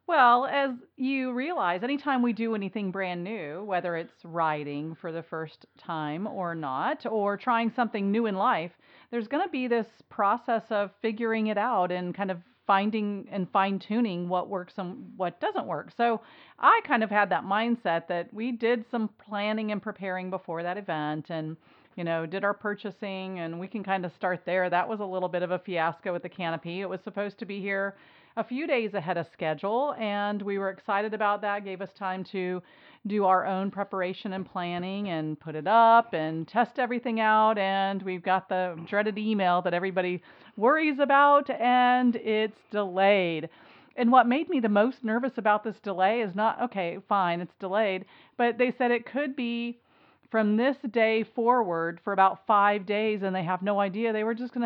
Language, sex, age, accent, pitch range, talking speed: English, female, 40-59, American, 180-230 Hz, 195 wpm